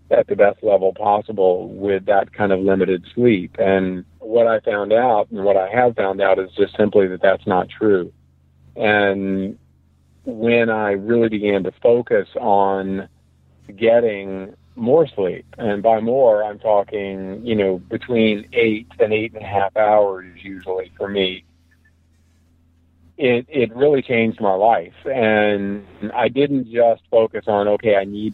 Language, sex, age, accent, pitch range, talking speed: English, male, 50-69, American, 95-110 Hz, 155 wpm